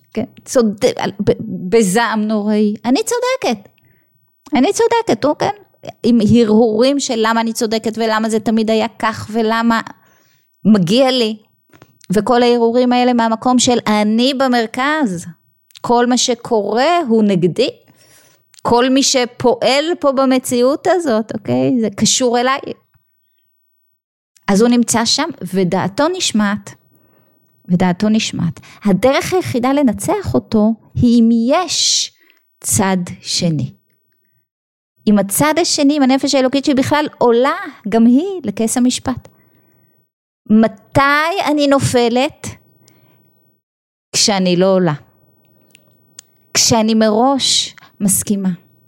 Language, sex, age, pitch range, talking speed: Hebrew, female, 20-39, 195-260 Hz, 100 wpm